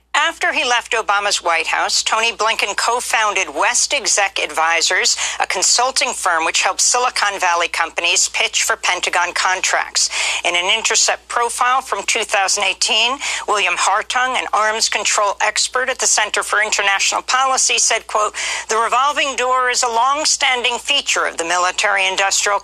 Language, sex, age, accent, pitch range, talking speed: English, female, 50-69, American, 185-245 Hz, 145 wpm